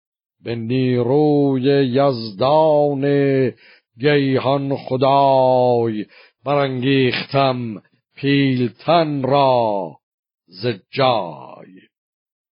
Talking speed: 50 wpm